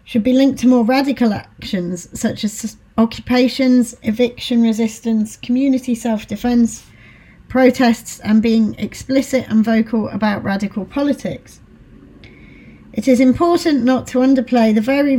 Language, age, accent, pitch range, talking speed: English, 40-59, British, 215-250 Hz, 125 wpm